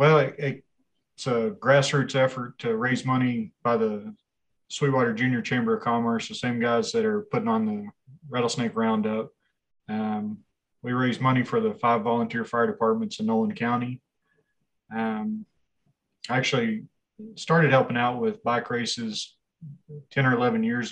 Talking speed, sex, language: 145 wpm, male, English